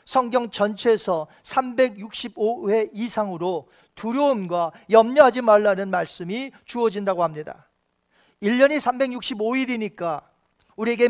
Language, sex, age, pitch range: Korean, male, 40-59, 205-275 Hz